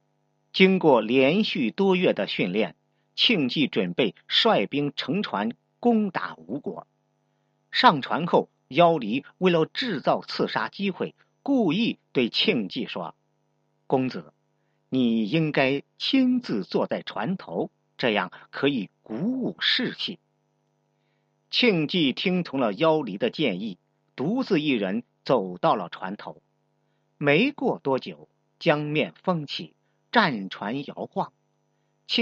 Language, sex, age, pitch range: English, male, 50-69, 150-235 Hz